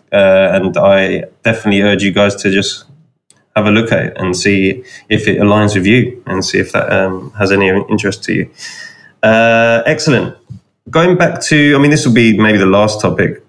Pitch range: 95-115 Hz